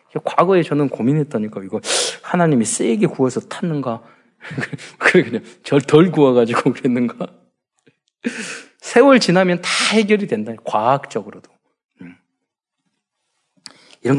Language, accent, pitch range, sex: Korean, native, 125-205 Hz, male